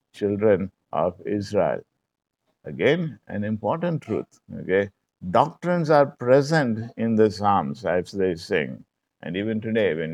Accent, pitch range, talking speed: Indian, 100-130 Hz, 125 wpm